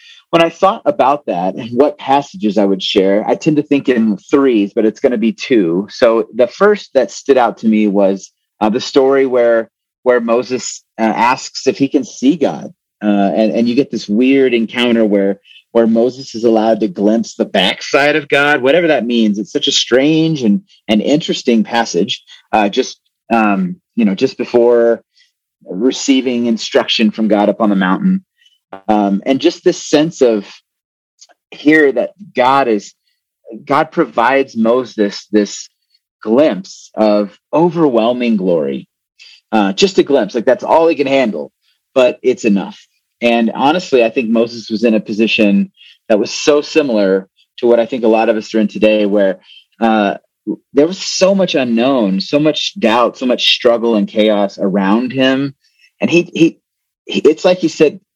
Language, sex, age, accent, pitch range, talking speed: English, male, 30-49, American, 110-150 Hz, 180 wpm